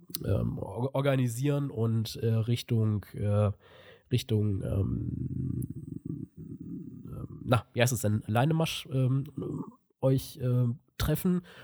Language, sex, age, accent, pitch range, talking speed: German, male, 20-39, German, 110-130 Hz, 80 wpm